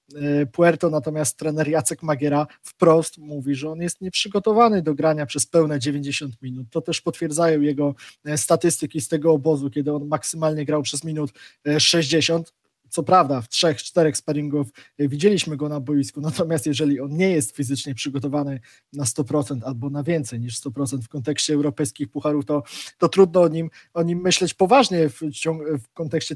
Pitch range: 145-170 Hz